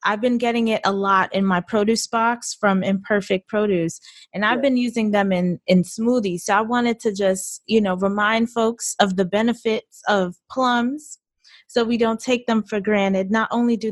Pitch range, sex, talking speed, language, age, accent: 185-225 Hz, female, 195 wpm, English, 20-39, American